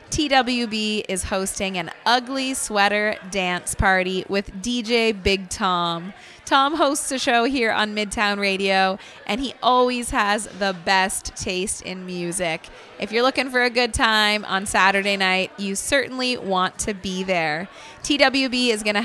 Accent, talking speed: American, 155 wpm